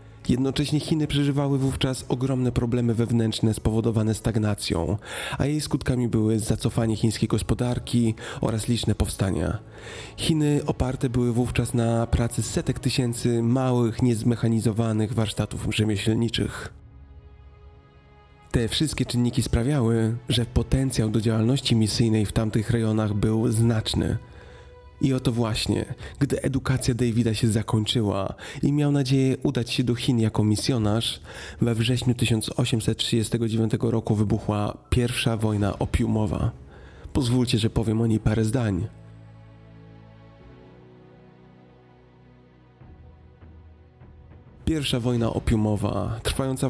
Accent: native